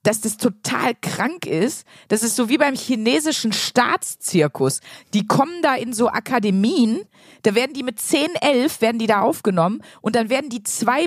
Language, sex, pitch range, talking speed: German, female, 200-260 Hz, 180 wpm